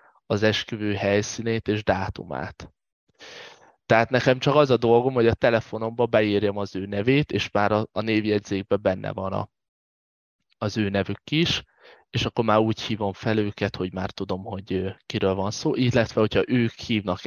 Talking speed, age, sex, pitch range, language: 165 wpm, 20-39, male, 95-115 Hz, Hungarian